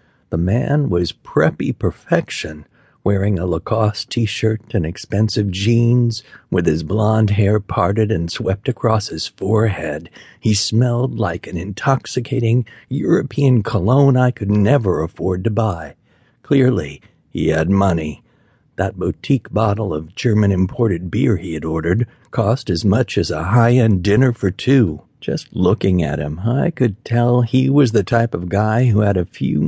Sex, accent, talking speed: male, American, 150 wpm